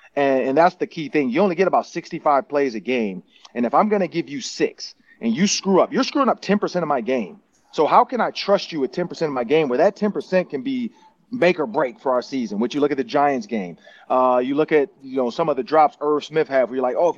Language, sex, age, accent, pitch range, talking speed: English, male, 30-49, American, 140-195 Hz, 285 wpm